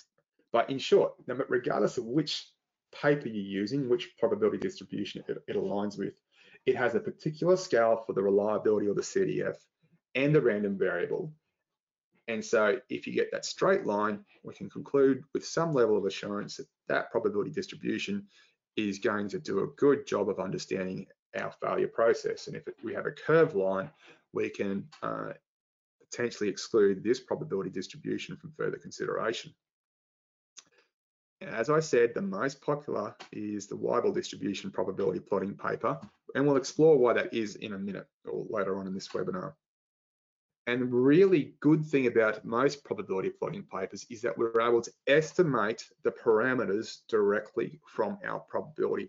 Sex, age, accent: male, 20-39, Australian